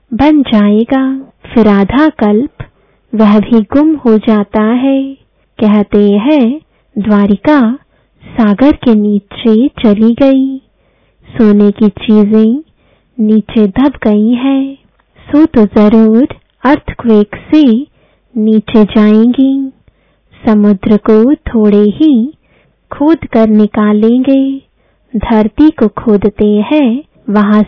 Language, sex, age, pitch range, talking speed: English, female, 20-39, 210-270 Hz, 95 wpm